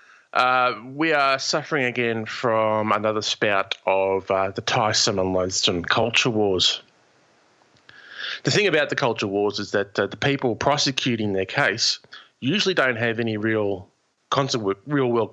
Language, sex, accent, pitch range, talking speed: English, male, Australian, 105-125 Hz, 150 wpm